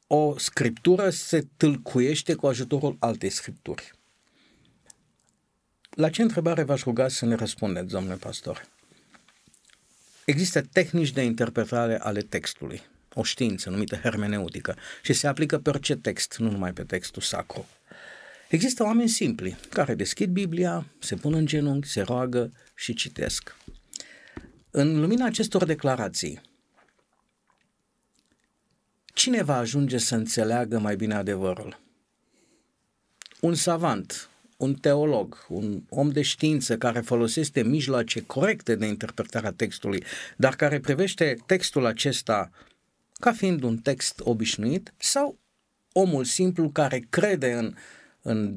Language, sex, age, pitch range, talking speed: Romanian, male, 50-69, 115-160 Hz, 120 wpm